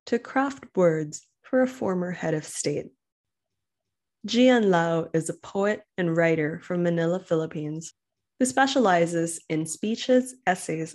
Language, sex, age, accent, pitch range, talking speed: English, female, 20-39, American, 165-215 Hz, 130 wpm